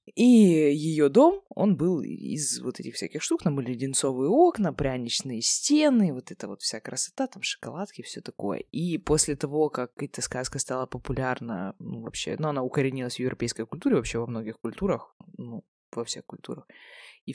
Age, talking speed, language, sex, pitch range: 20-39, 175 wpm, Russian, female, 125-160 Hz